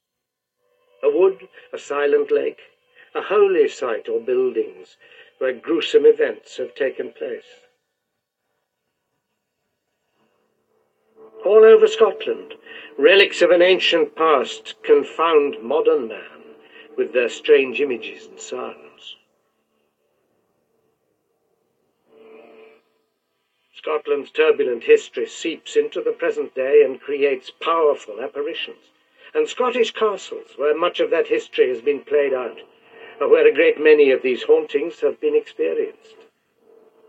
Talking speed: 110 wpm